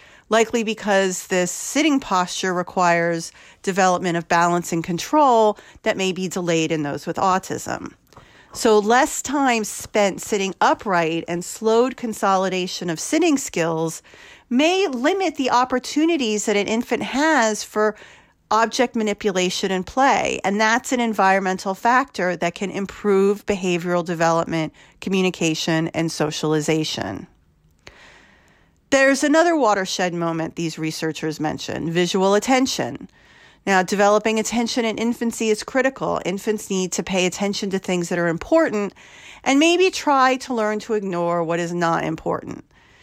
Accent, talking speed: American, 130 wpm